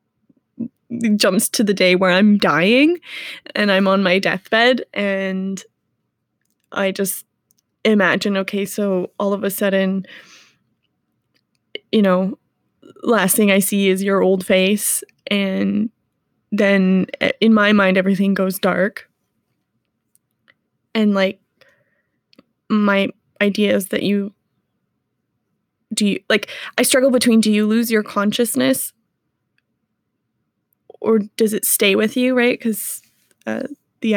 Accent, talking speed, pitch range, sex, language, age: American, 120 wpm, 195-225 Hz, female, English, 20-39